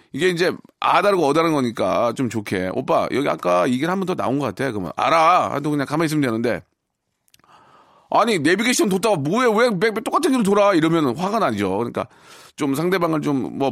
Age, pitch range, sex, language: 40-59, 110-155 Hz, male, Korean